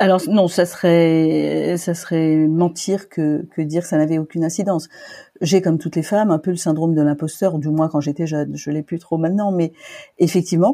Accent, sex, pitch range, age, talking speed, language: French, female, 155-190 Hz, 40-59, 210 wpm, French